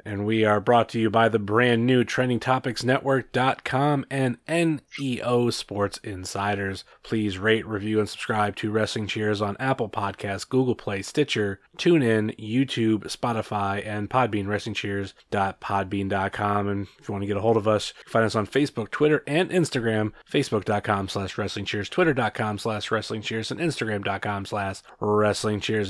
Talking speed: 155 wpm